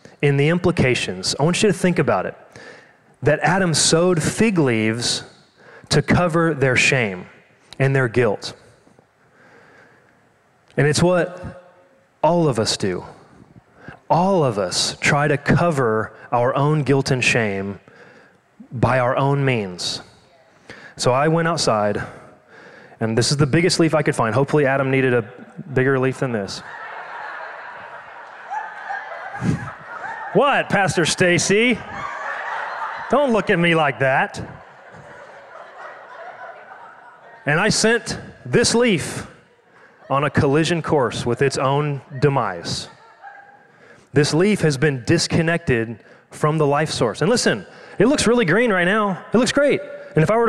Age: 30-49